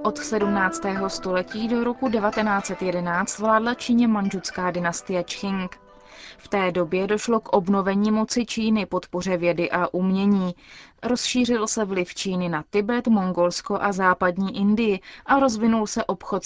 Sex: female